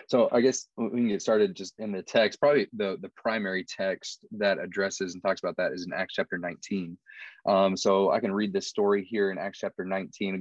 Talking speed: 230 wpm